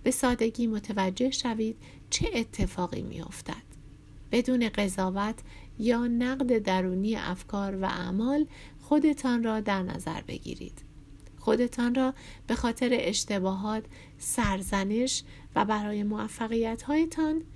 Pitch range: 190-255 Hz